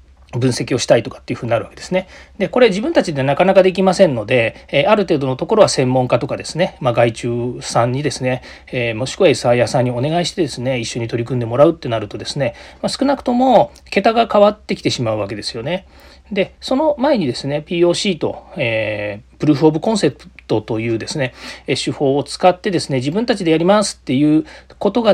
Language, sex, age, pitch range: Japanese, male, 40-59, 125-190 Hz